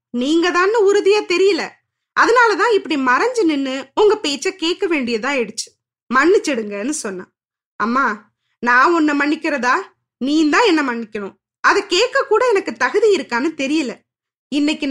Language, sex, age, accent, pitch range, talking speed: Tamil, female, 20-39, native, 265-375 Hz, 120 wpm